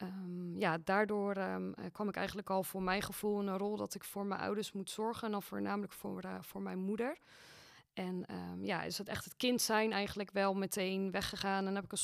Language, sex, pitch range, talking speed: Dutch, female, 195-225 Hz, 230 wpm